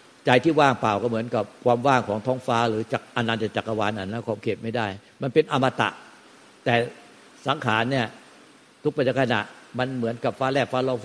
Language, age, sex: Thai, 60-79, male